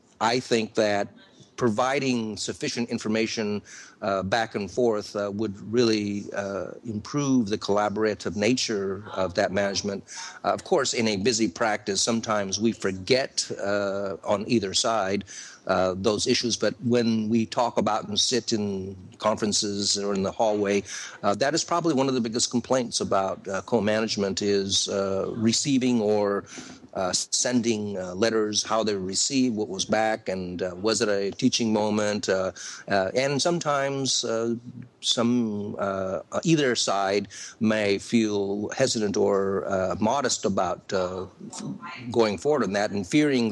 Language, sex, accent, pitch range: English, male, American, 100-120 Hz